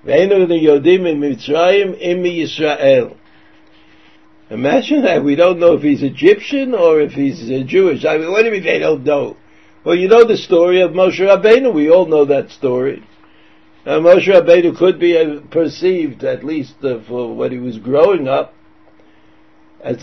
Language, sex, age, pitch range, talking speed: English, male, 60-79, 145-215 Hz, 155 wpm